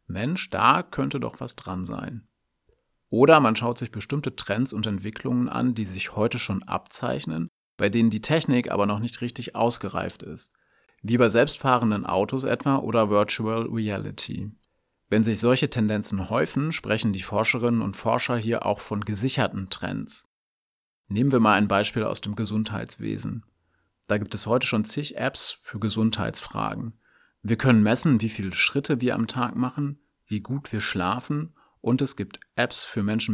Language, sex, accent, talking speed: German, male, German, 165 wpm